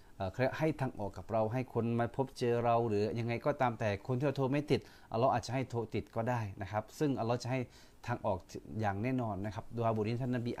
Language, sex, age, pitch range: Thai, male, 30-49, 105-130 Hz